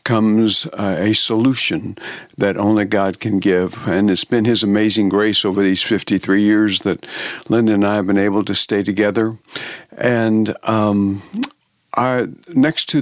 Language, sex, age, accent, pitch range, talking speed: English, male, 60-79, American, 100-115 Hz, 150 wpm